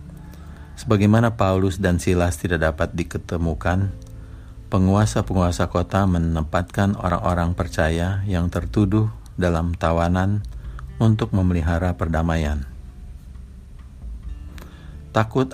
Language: Indonesian